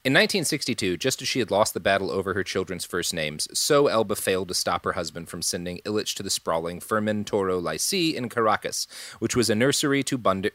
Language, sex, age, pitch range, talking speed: English, male, 30-49, 100-135 Hz, 215 wpm